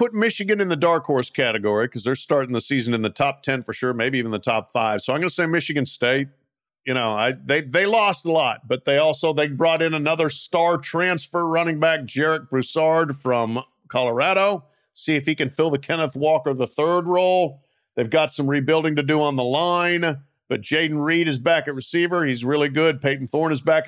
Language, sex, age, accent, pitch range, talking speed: English, male, 50-69, American, 135-180 Hz, 215 wpm